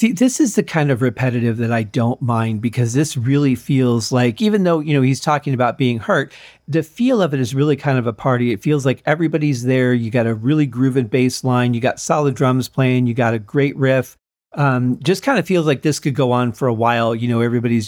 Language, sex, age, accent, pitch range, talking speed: English, male, 40-59, American, 125-150 Hz, 245 wpm